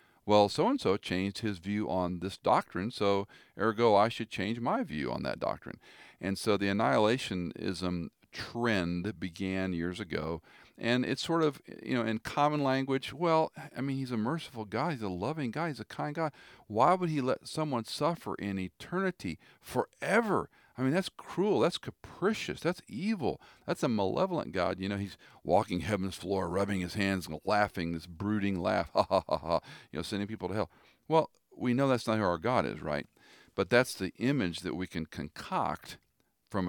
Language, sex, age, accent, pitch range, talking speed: English, male, 50-69, American, 90-125 Hz, 190 wpm